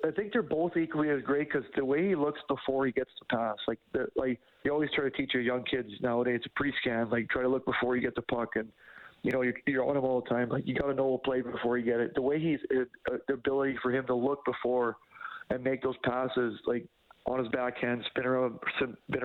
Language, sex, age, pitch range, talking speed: English, male, 40-59, 120-135 Hz, 260 wpm